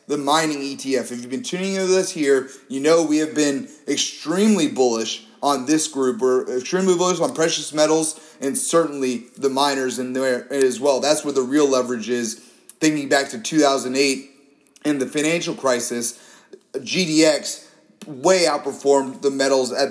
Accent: American